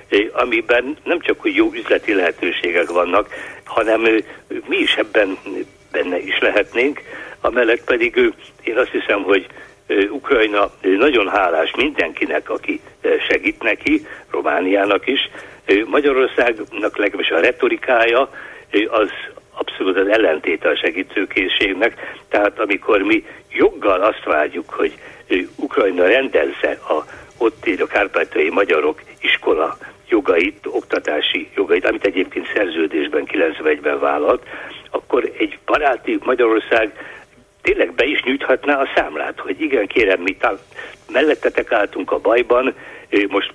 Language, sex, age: Hungarian, male, 60-79